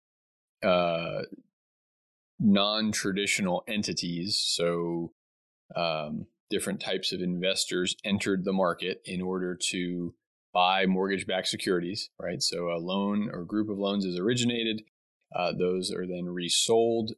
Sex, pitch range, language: male, 85-105 Hz, English